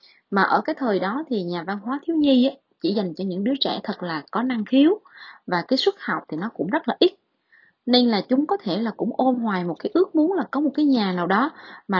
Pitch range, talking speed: 185-275 Hz, 265 wpm